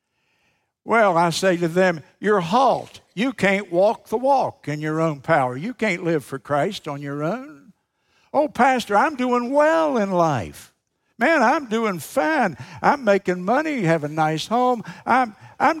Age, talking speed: 60-79, 165 wpm